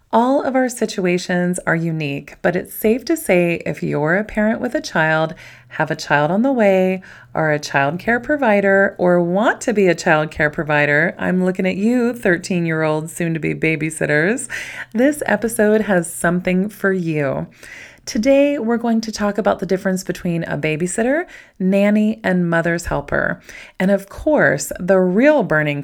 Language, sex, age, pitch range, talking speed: English, female, 30-49, 170-220 Hz, 165 wpm